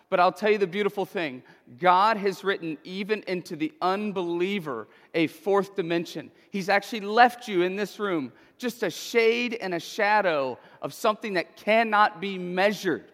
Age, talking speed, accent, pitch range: 40-59, 165 wpm, American, 190-235 Hz